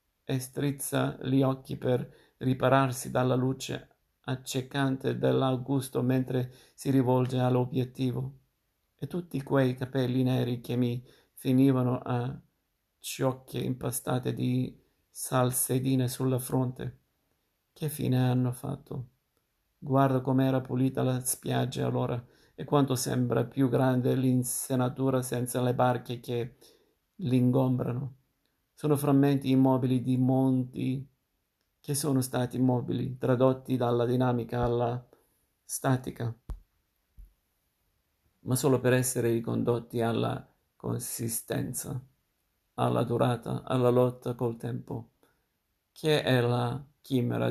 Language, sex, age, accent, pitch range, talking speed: Italian, male, 50-69, native, 120-130 Hz, 100 wpm